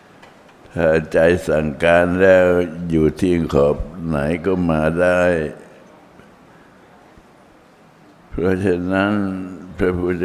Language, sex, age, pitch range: Thai, male, 60-79, 80-90 Hz